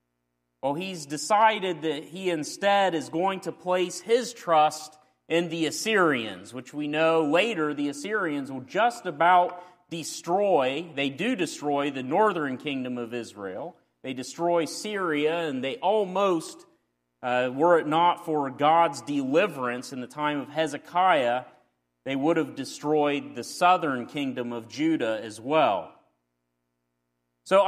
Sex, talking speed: male, 135 wpm